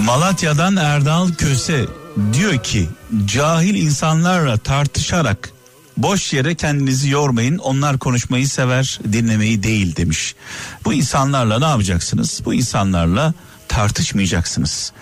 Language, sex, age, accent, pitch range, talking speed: Turkish, male, 50-69, native, 105-160 Hz, 100 wpm